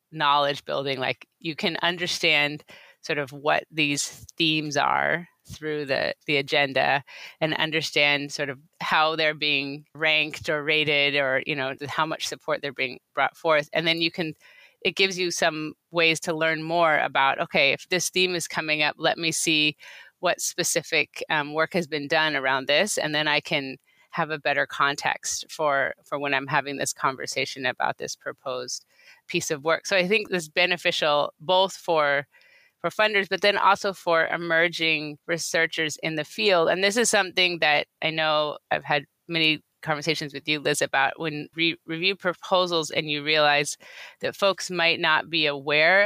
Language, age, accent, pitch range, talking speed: English, 30-49, American, 145-170 Hz, 180 wpm